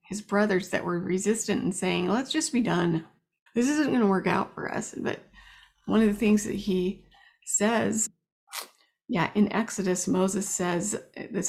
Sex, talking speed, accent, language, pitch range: female, 170 wpm, American, English, 195-250 Hz